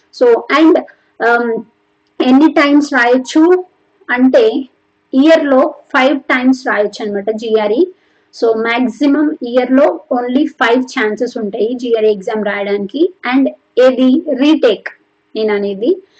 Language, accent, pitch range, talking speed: Telugu, native, 230-285 Hz, 105 wpm